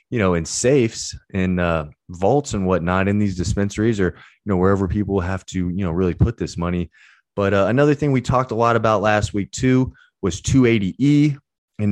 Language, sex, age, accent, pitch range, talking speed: English, male, 20-39, American, 95-125 Hz, 195 wpm